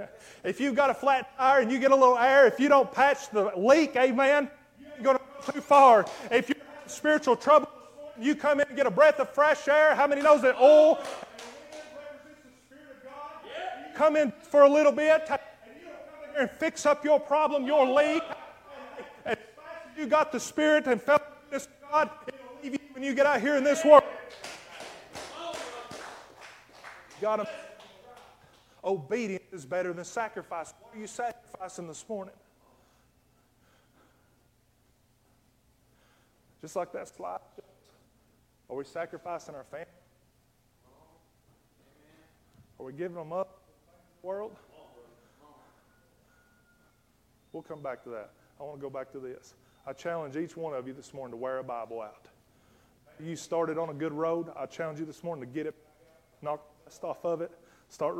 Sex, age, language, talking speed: male, 30-49, English, 170 wpm